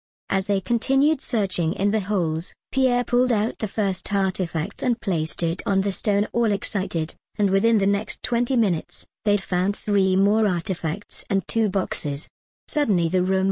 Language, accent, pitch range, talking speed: English, British, 180-215 Hz, 170 wpm